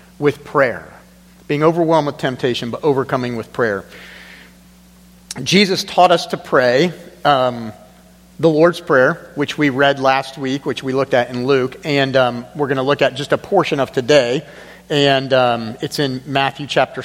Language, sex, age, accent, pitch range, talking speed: English, male, 40-59, American, 120-160 Hz, 170 wpm